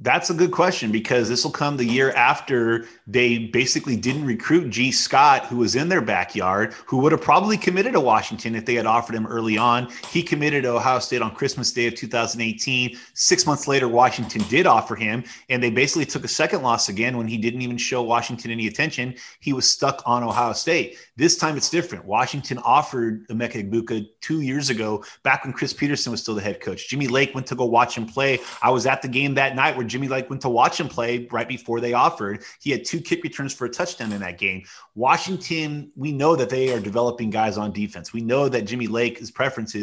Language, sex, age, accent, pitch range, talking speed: English, male, 30-49, American, 115-135 Hz, 225 wpm